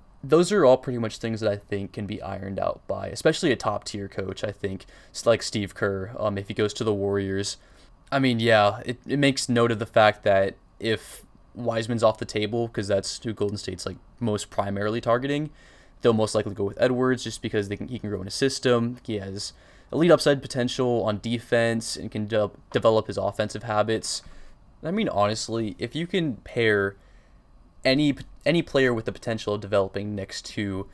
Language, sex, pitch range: English, male, 100-120 Hz